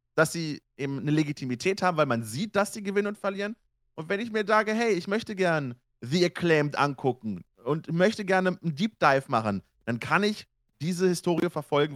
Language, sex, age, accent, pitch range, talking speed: German, male, 30-49, German, 120-185 Hz, 195 wpm